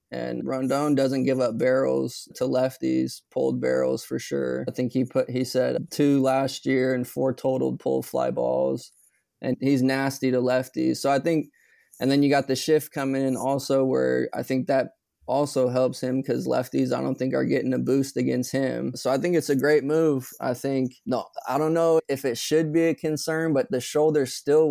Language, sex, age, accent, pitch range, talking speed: English, male, 20-39, American, 125-135 Hz, 205 wpm